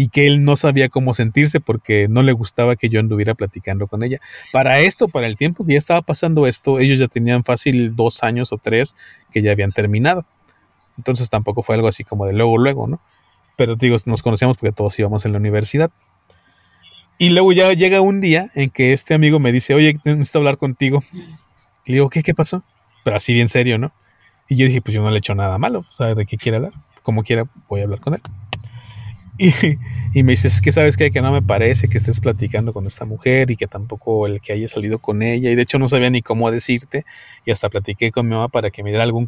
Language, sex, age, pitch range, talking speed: Spanish, male, 30-49, 110-150 Hz, 235 wpm